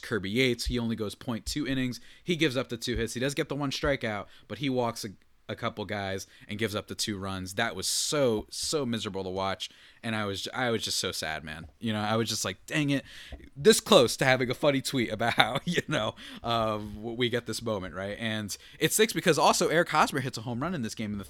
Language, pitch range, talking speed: English, 105-145 Hz, 255 wpm